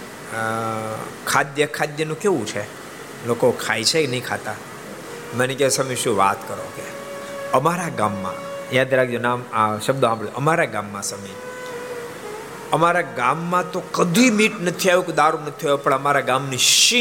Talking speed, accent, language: 40 wpm, native, Gujarati